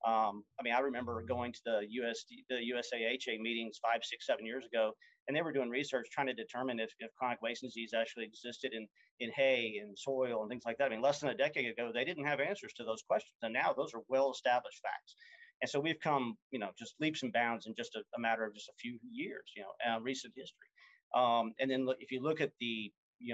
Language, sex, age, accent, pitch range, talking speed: English, male, 40-59, American, 115-135 Hz, 245 wpm